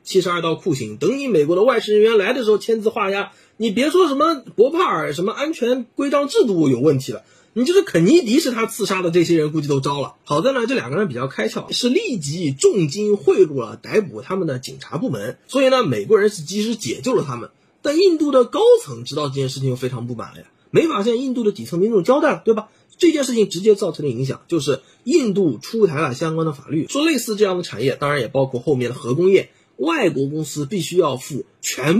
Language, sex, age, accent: Chinese, male, 30-49, native